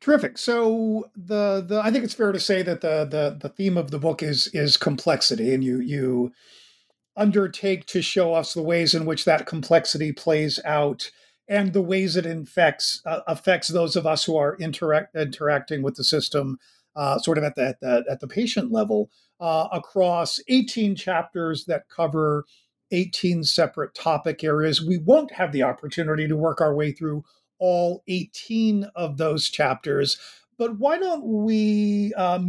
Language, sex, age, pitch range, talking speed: English, male, 50-69, 155-205 Hz, 175 wpm